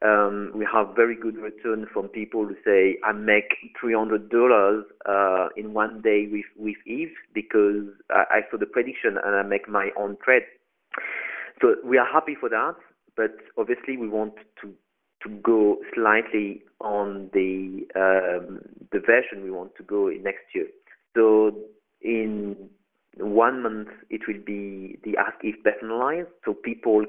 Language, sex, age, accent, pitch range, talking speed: English, male, 40-59, French, 100-115 Hz, 160 wpm